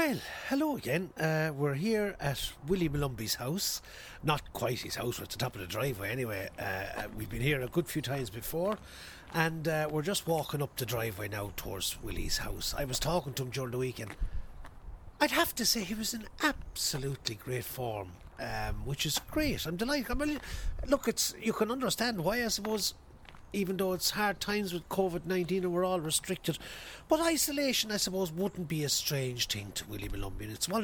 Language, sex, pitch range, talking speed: English, male, 115-185 Hz, 200 wpm